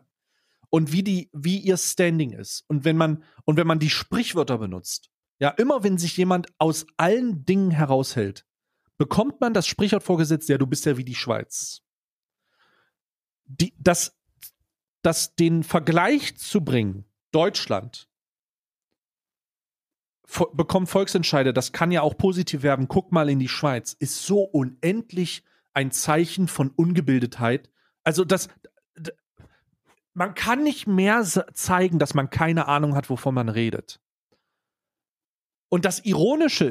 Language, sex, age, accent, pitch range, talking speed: German, male, 40-59, German, 140-185 Hz, 130 wpm